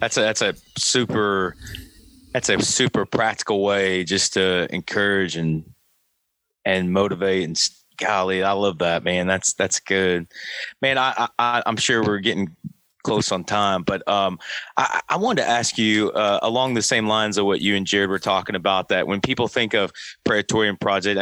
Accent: American